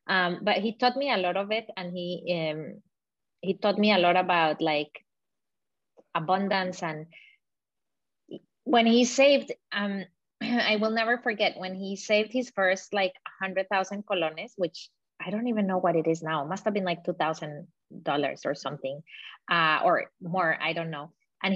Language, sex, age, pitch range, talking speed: English, female, 20-39, 175-220 Hz, 170 wpm